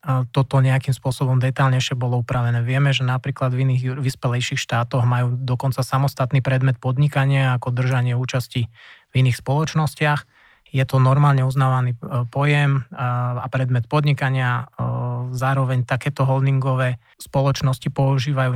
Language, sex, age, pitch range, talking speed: Slovak, male, 20-39, 125-135 Hz, 120 wpm